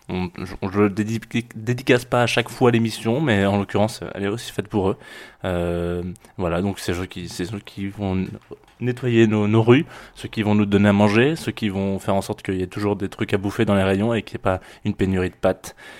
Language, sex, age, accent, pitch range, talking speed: French, male, 20-39, French, 95-110 Hz, 245 wpm